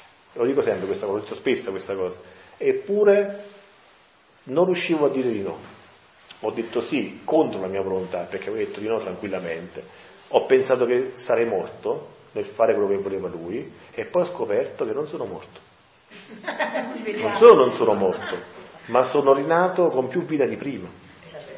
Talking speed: 165 wpm